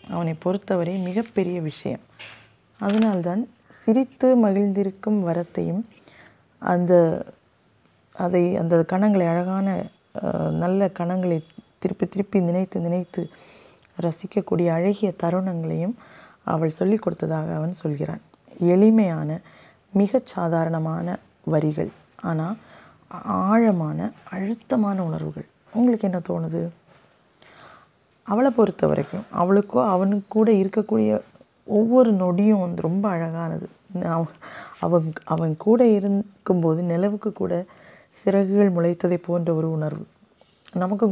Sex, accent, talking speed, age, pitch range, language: female, native, 90 wpm, 20-39, 165-205 Hz, Tamil